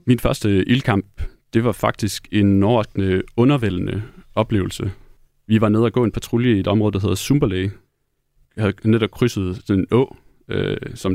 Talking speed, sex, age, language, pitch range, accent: 165 wpm, male, 30-49, Danish, 100-120 Hz, native